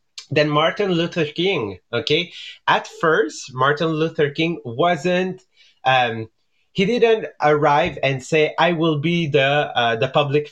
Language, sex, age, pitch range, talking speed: English, male, 30-49, 130-155 Hz, 135 wpm